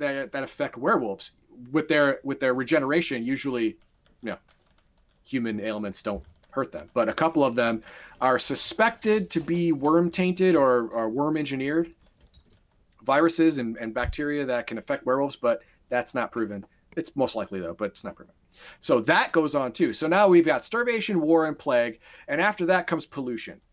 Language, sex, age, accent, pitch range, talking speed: English, male, 30-49, American, 130-175 Hz, 175 wpm